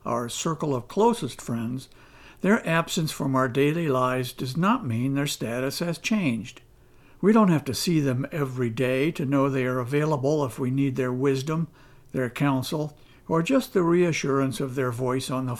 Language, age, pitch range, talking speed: English, 60-79, 130-165 Hz, 180 wpm